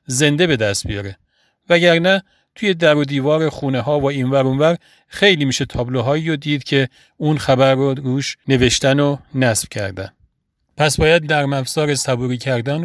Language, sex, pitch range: Persian, male, 130-160 Hz